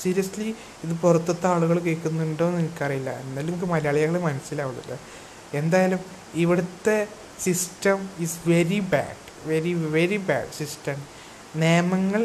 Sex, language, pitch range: male, Malayalam, 150-180 Hz